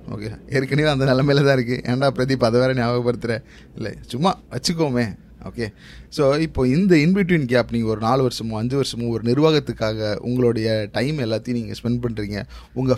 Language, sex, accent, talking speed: Tamil, male, native, 165 wpm